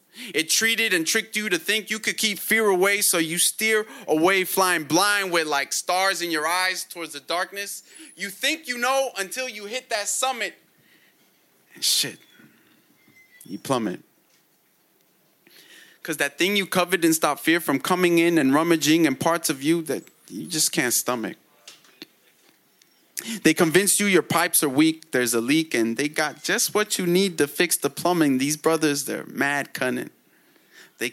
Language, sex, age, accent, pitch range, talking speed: English, male, 20-39, American, 160-210 Hz, 170 wpm